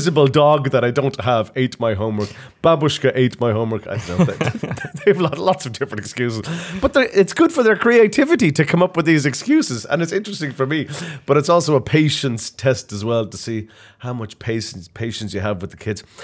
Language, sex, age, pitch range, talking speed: Russian, male, 30-49, 100-150 Hz, 210 wpm